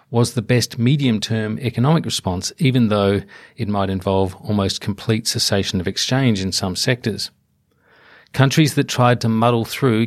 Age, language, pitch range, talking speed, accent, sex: 40-59, English, 105-130 Hz, 150 wpm, Australian, male